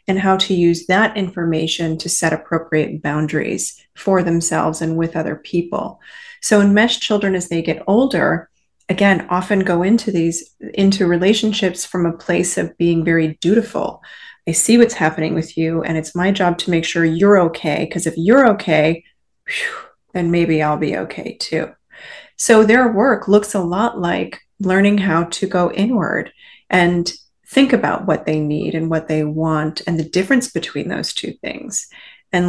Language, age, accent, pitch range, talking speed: English, 30-49, American, 165-205 Hz, 170 wpm